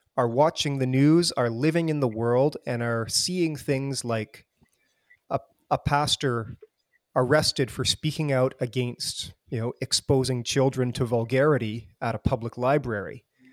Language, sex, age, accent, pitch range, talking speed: English, male, 30-49, American, 120-145 Hz, 140 wpm